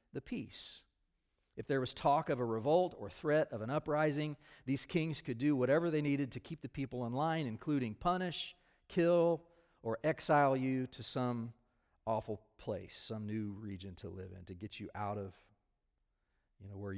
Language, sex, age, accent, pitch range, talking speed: English, male, 40-59, American, 115-155 Hz, 180 wpm